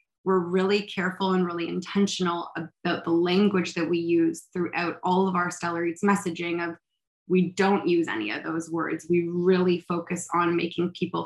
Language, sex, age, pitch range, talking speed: English, female, 20-39, 170-190 Hz, 175 wpm